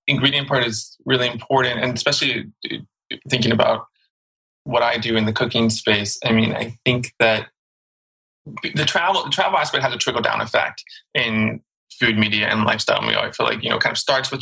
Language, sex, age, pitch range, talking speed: English, male, 20-39, 115-130 Hz, 190 wpm